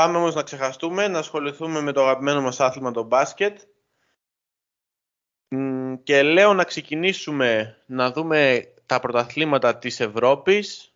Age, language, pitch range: 20-39, Greek, 125-160 Hz